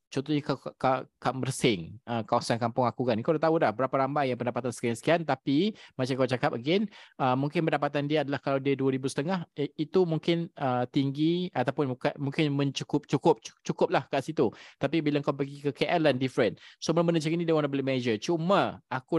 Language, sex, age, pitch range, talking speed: Malay, male, 20-39, 120-150 Hz, 180 wpm